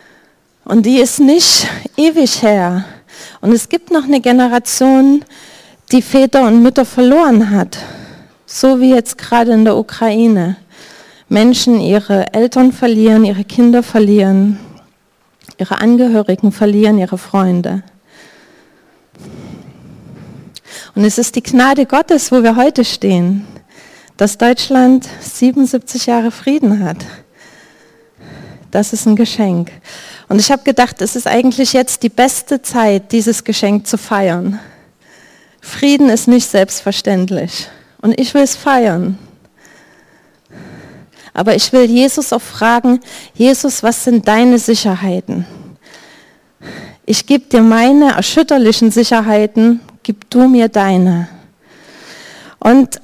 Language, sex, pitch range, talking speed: German, female, 205-255 Hz, 115 wpm